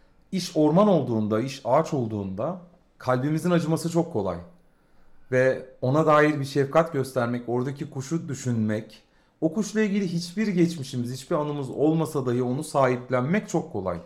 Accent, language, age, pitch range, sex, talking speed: native, Turkish, 40-59, 115-165 Hz, male, 135 wpm